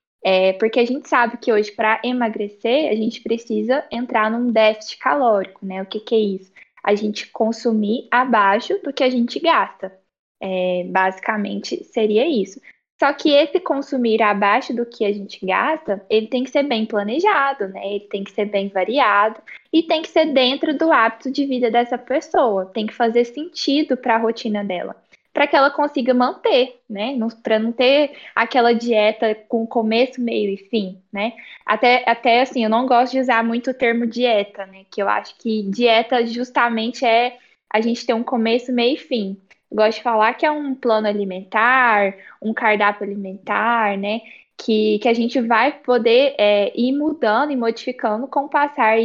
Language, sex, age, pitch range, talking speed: Portuguese, female, 10-29, 215-255 Hz, 175 wpm